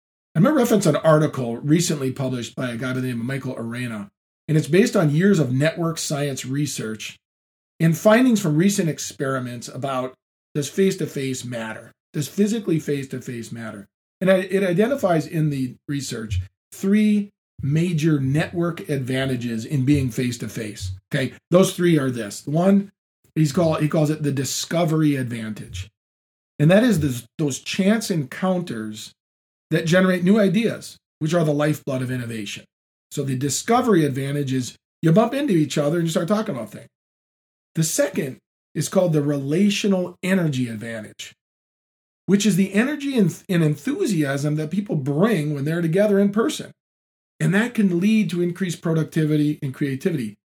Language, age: English, 40-59